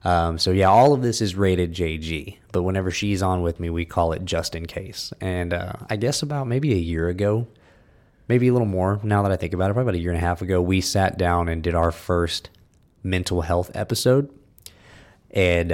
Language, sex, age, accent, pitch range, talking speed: English, male, 20-39, American, 85-110 Hz, 225 wpm